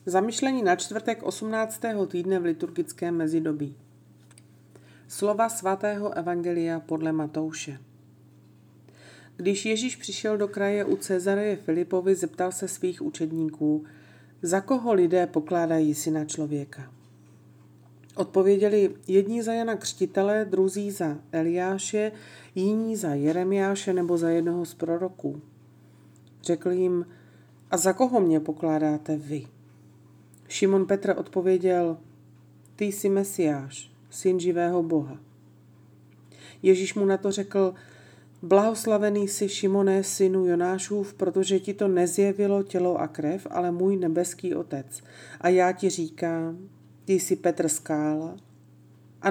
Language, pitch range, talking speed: Slovak, 145-195 Hz, 115 wpm